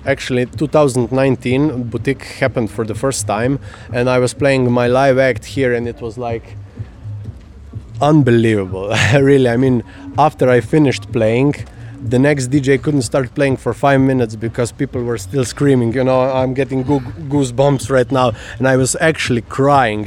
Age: 20-39